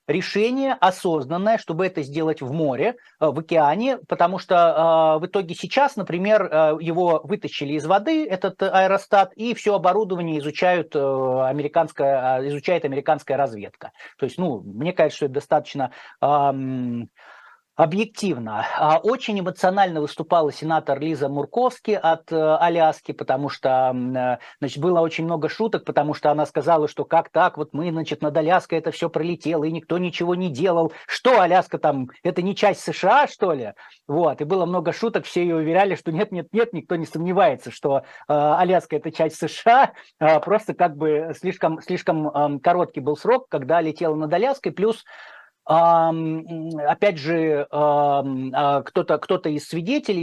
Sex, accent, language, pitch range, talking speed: male, native, Russian, 150-185 Hz, 145 wpm